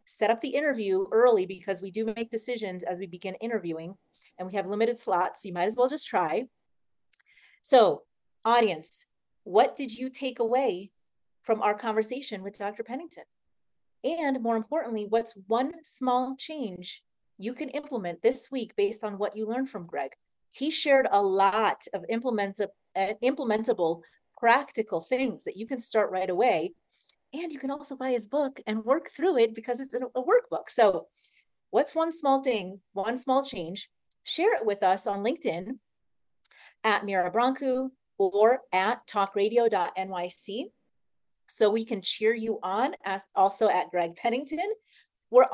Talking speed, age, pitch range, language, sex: 155 wpm, 30-49, 200-260 Hz, English, female